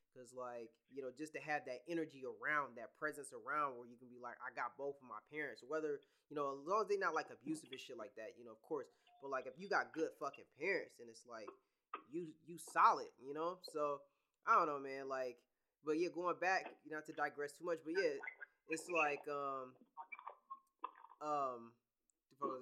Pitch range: 145-230 Hz